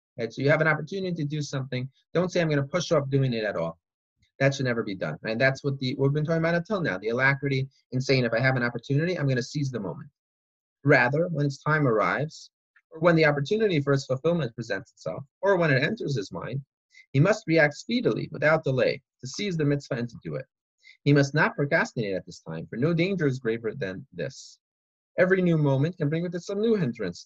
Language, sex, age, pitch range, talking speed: English, male, 30-49, 130-160 Hz, 235 wpm